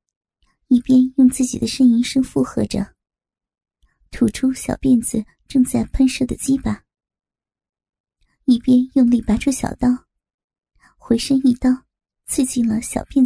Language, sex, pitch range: Chinese, male, 235-260 Hz